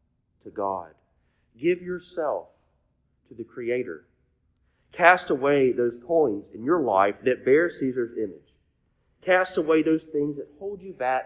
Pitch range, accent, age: 100-150 Hz, American, 40-59